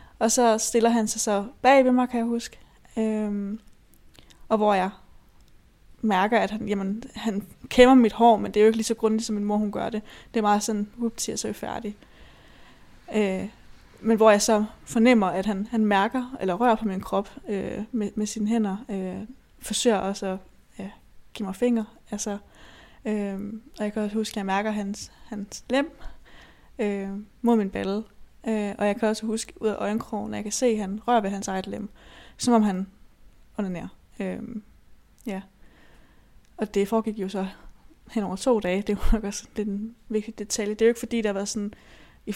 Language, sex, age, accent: Danish, female, 20-39, native